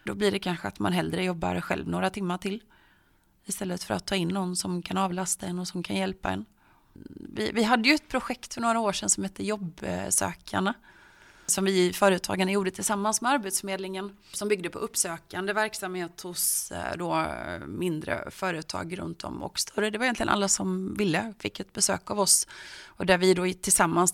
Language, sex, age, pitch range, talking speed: Swedish, female, 30-49, 165-195 Hz, 190 wpm